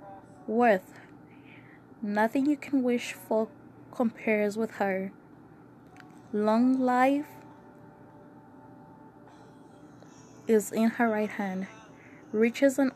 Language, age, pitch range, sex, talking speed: English, 20-39, 215-240 Hz, female, 85 wpm